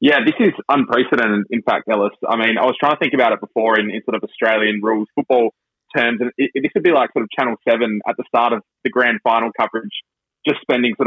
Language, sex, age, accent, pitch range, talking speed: English, male, 20-39, Australian, 110-130 Hz, 255 wpm